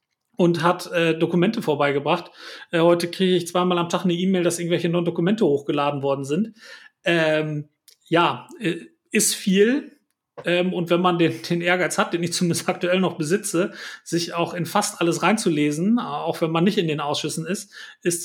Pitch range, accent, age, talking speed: 155-180 Hz, German, 40-59, 180 wpm